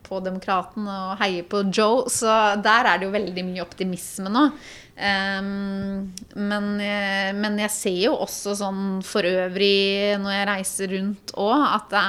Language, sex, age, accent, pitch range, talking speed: English, female, 30-49, Swedish, 185-210 Hz, 170 wpm